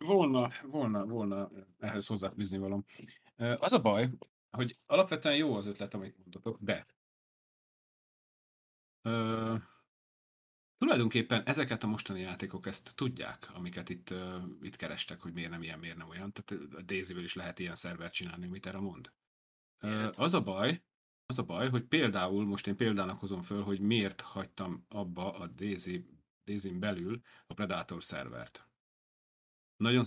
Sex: male